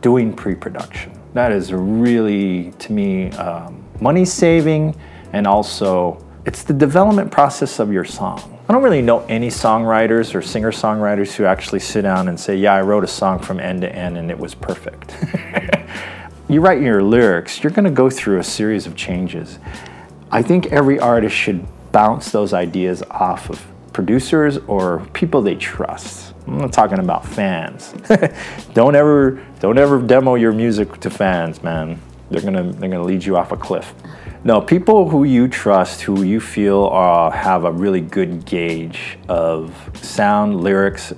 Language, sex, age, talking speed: English, male, 30-49, 170 wpm